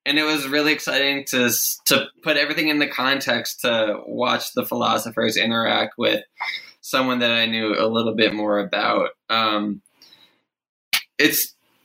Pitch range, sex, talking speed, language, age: 115-135 Hz, male, 145 wpm, English, 20-39